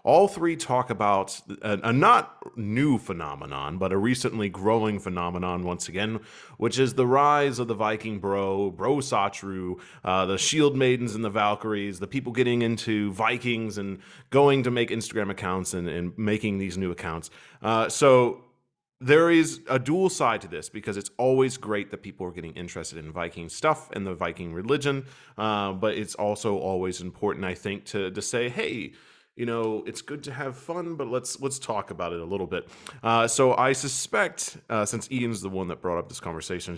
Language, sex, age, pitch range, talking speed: English, male, 30-49, 95-130 Hz, 190 wpm